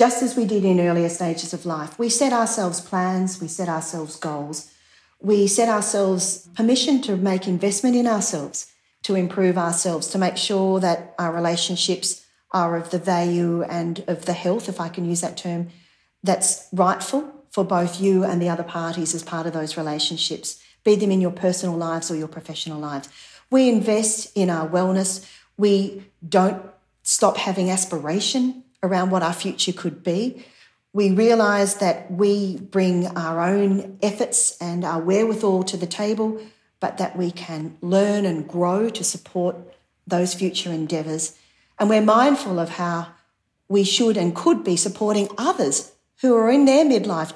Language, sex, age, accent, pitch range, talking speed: English, female, 40-59, Australian, 170-210 Hz, 165 wpm